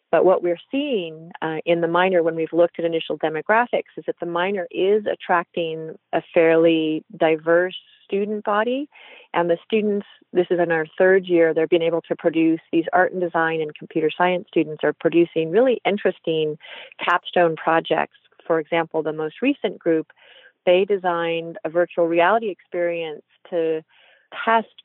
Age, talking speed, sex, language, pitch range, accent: 40-59, 160 wpm, female, English, 165-190 Hz, American